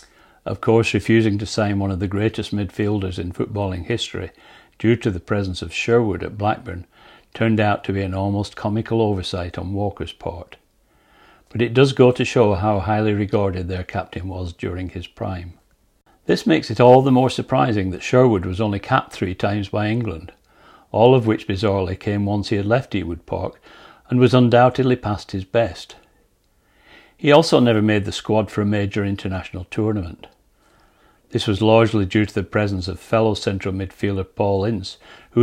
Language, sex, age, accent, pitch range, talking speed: English, male, 60-79, British, 95-115 Hz, 180 wpm